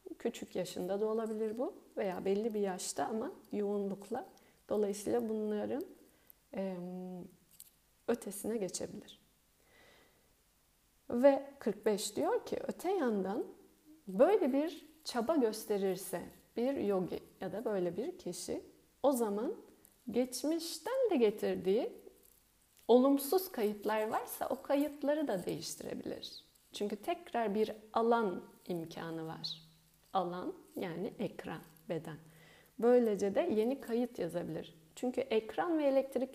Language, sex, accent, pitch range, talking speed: Turkish, female, native, 195-260 Hz, 105 wpm